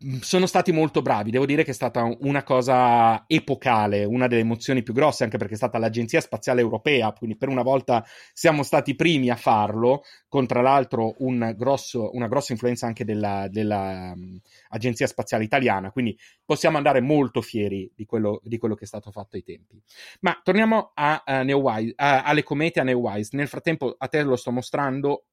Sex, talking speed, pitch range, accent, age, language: male, 165 wpm, 110-150 Hz, native, 30-49, Italian